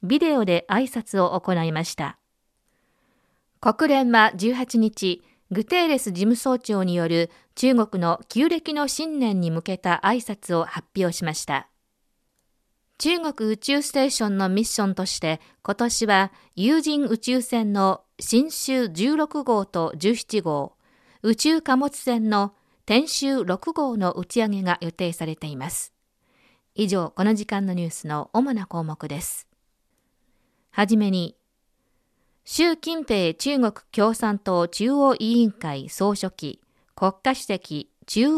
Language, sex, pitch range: Japanese, female, 180-250 Hz